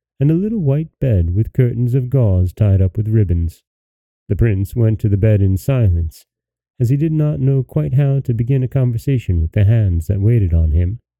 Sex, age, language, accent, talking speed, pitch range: male, 30-49, English, American, 210 wpm, 95-135 Hz